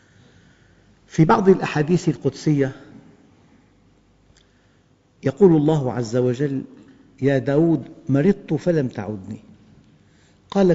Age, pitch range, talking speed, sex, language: 50-69, 135-170 Hz, 80 wpm, male, Arabic